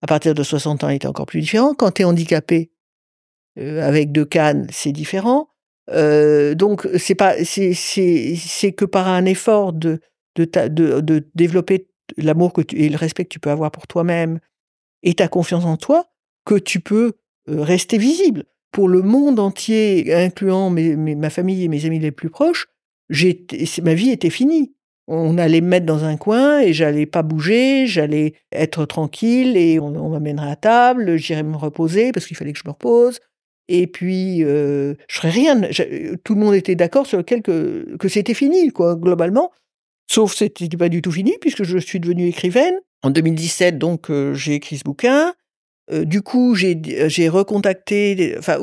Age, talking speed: 50-69, 195 wpm